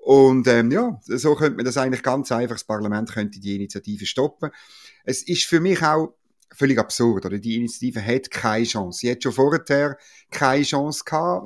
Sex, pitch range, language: male, 105-140 Hz, German